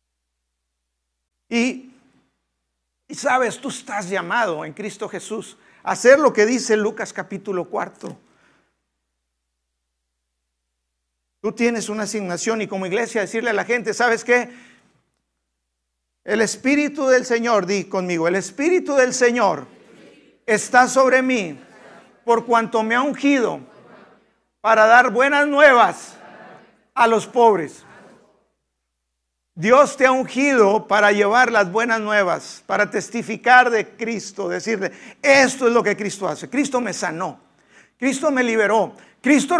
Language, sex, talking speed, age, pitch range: Spanish, male, 125 wpm, 50-69, 165-250 Hz